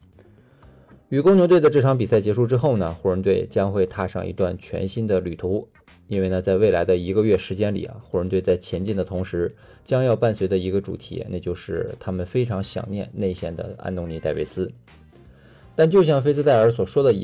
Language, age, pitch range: Chinese, 20-39, 95-115 Hz